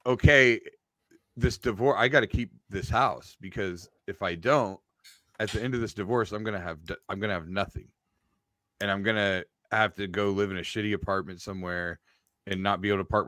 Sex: male